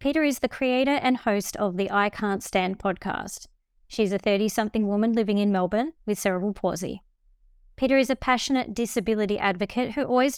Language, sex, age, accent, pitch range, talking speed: English, female, 20-39, Australian, 190-235 Hz, 175 wpm